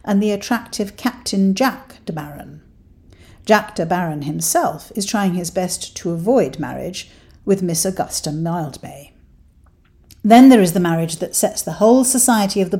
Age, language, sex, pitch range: 50-69, English, female, 170-230 Hz